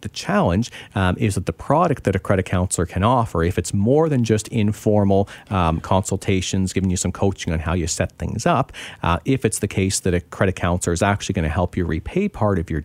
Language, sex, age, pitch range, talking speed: English, male, 40-59, 90-115 Hz, 235 wpm